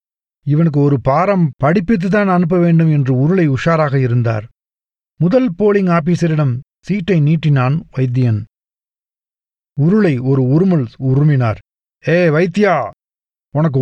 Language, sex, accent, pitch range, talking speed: Tamil, male, native, 135-185 Hz, 105 wpm